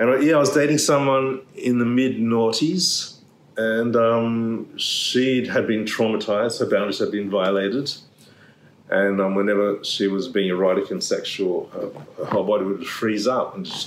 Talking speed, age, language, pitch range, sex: 165 wpm, 30-49, English, 100-120 Hz, male